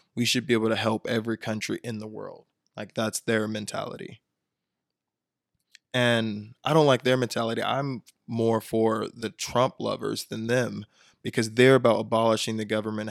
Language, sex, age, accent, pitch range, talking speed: English, male, 20-39, American, 110-120 Hz, 160 wpm